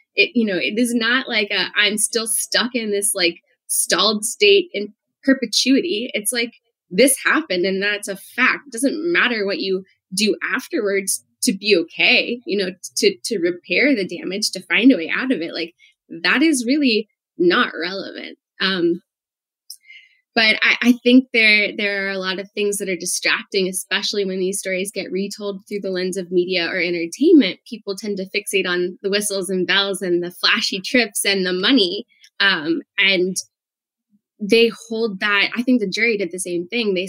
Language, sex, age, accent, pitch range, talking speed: English, female, 10-29, American, 190-235 Hz, 185 wpm